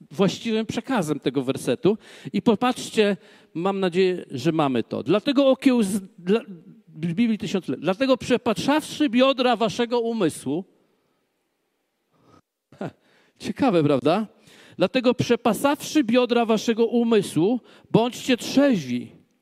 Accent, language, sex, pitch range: native, Polish, male, 190-255 Hz